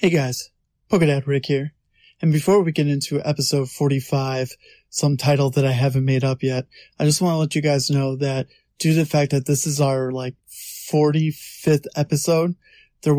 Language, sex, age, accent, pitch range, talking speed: English, male, 20-39, American, 145-185 Hz, 185 wpm